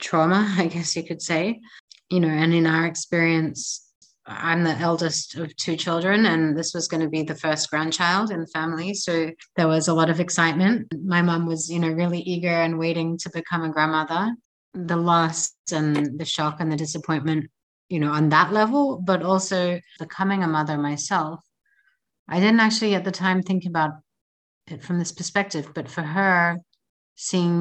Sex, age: female, 30-49